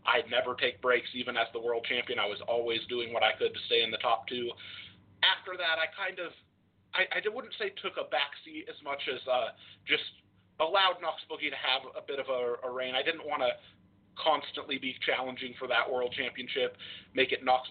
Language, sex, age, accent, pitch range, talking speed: English, male, 30-49, American, 125-160 Hz, 220 wpm